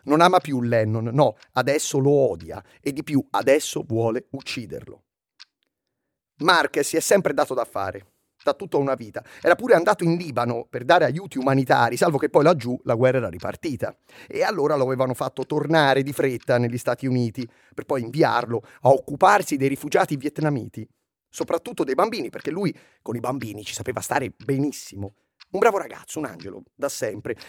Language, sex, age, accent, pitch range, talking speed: Italian, male, 30-49, native, 125-180 Hz, 175 wpm